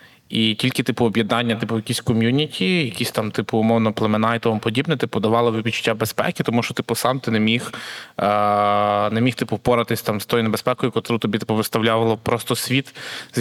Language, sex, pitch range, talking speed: Ukrainian, male, 115-130 Hz, 185 wpm